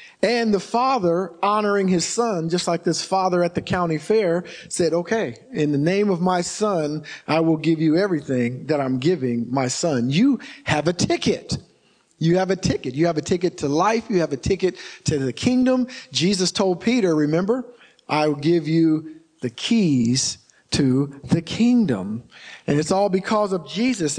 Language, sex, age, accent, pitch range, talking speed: English, male, 50-69, American, 165-225 Hz, 180 wpm